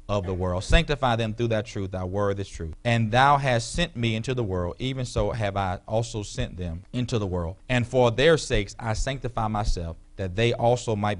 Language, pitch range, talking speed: English, 100-125 Hz, 220 wpm